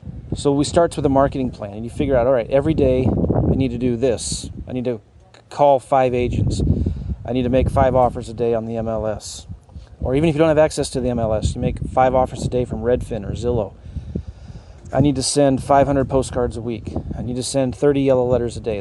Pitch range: 110-140 Hz